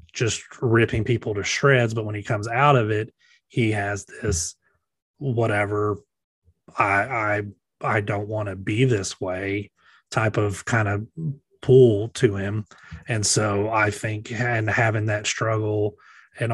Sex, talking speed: male, 150 wpm